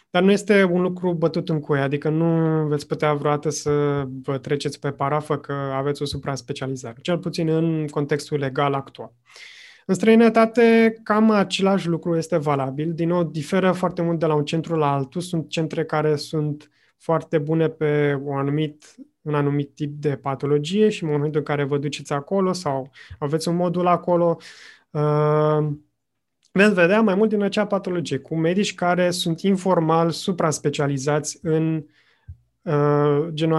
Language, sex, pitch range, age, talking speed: Romanian, male, 145-175 Hz, 20-39, 160 wpm